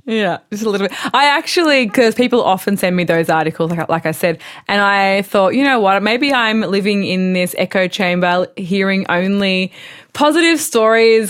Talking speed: 185 wpm